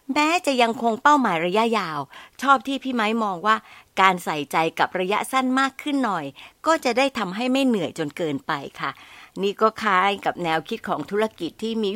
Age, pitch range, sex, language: 60-79, 185-265 Hz, female, Thai